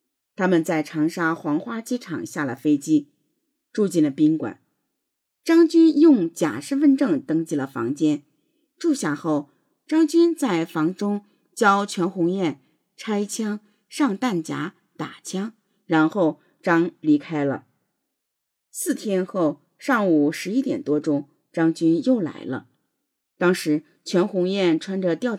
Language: Chinese